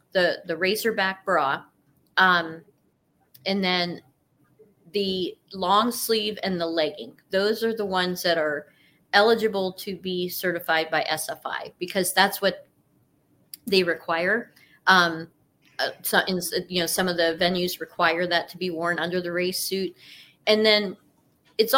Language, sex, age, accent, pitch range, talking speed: English, female, 30-49, American, 175-210 Hz, 140 wpm